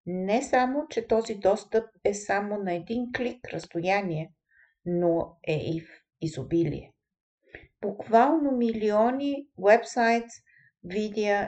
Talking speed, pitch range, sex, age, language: 105 wpm, 180-240 Hz, female, 50-69, Bulgarian